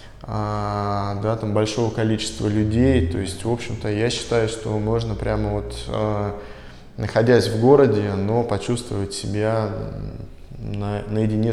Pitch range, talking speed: 100-115 Hz, 115 wpm